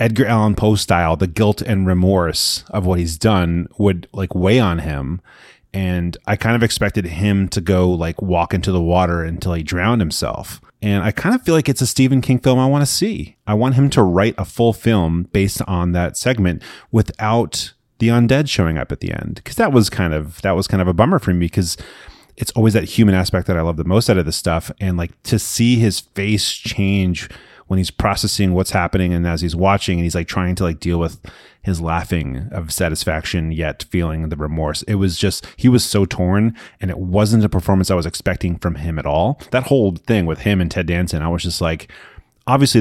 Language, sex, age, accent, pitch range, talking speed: English, male, 30-49, American, 85-110 Hz, 225 wpm